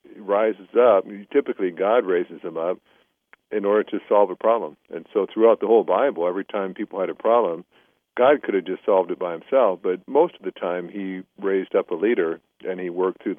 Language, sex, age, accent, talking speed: English, male, 60-79, American, 210 wpm